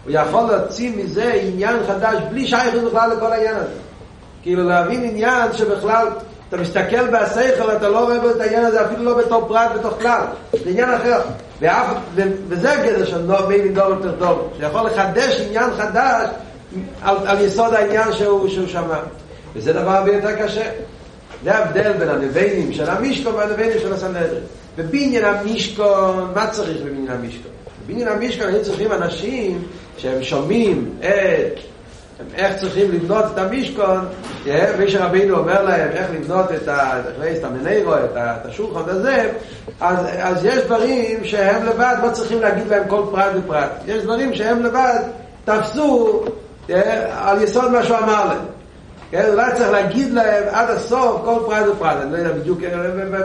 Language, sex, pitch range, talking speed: Hebrew, male, 190-230 Hz, 160 wpm